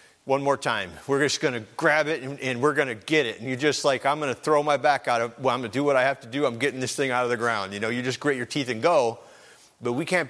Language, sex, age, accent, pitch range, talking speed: English, male, 40-59, American, 135-195 Hz, 340 wpm